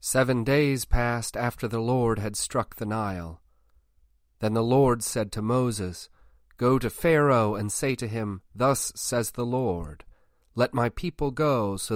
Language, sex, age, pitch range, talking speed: English, male, 40-59, 95-130 Hz, 160 wpm